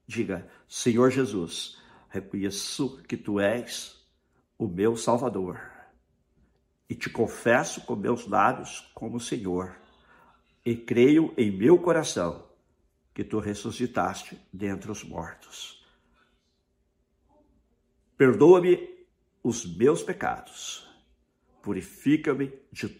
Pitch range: 100-135 Hz